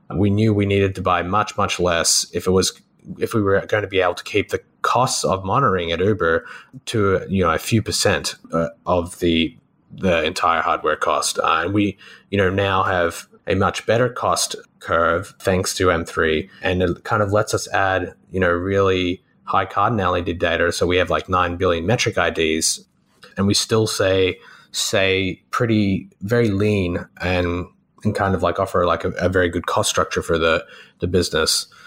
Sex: male